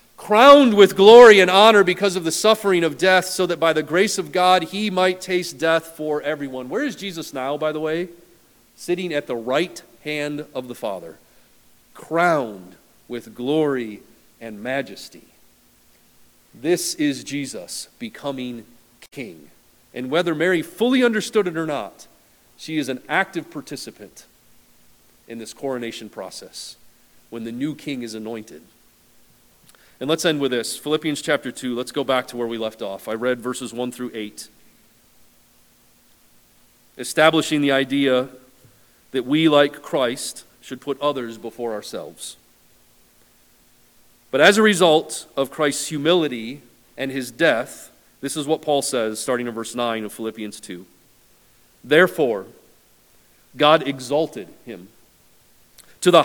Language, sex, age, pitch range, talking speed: English, male, 40-59, 120-170 Hz, 145 wpm